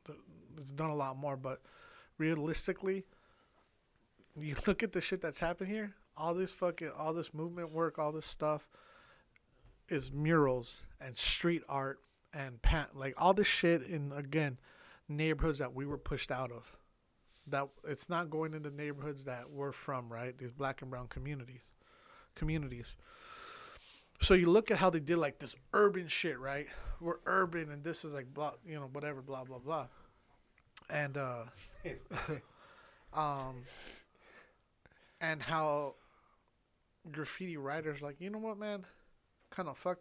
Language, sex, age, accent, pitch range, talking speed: English, male, 30-49, American, 135-165 Hz, 155 wpm